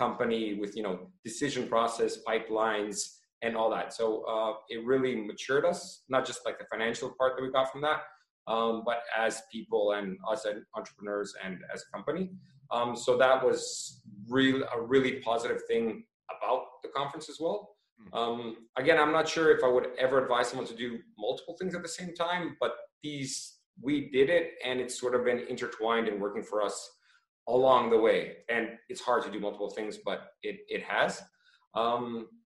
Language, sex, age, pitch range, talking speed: English, male, 30-49, 115-180 Hz, 185 wpm